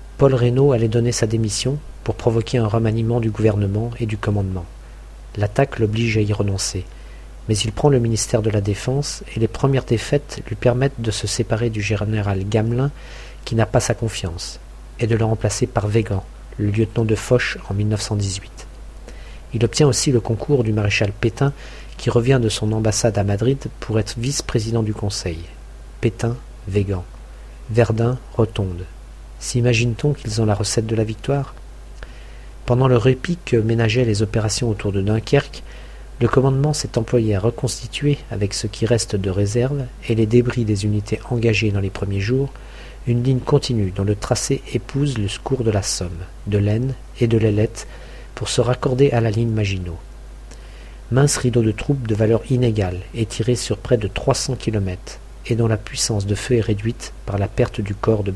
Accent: French